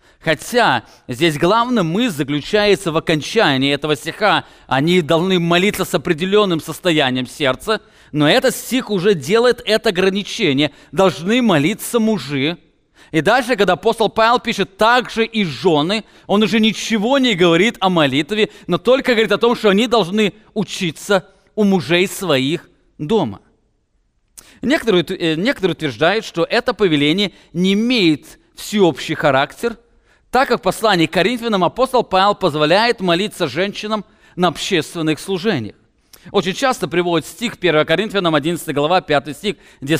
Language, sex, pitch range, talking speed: English, male, 160-220 Hz, 135 wpm